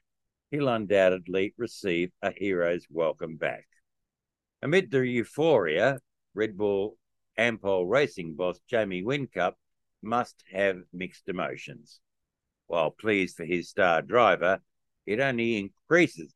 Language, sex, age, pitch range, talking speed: English, male, 60-79, 90-130 Hz, 110 wpm